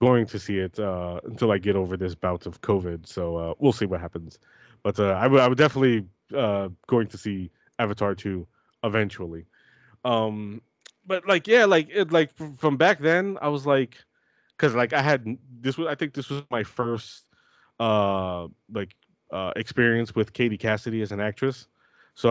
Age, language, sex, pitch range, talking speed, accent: 20-39, English, male, 105-140 Hz, 185 wpm, American